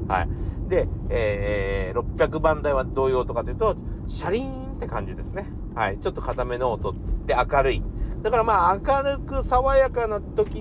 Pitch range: 95-155 Hz